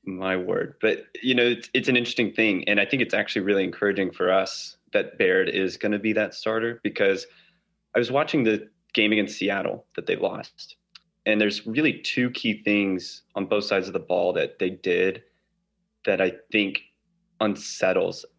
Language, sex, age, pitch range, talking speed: English, male, 30-49, 105-130 Hz, 185 wpm